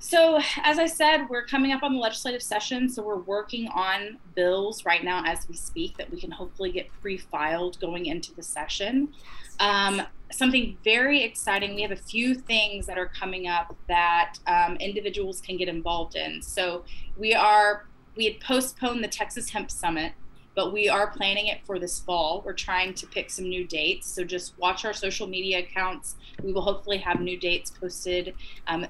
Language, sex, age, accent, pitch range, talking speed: English, female, 20-39, American, 180-225 Hz, 185 wpm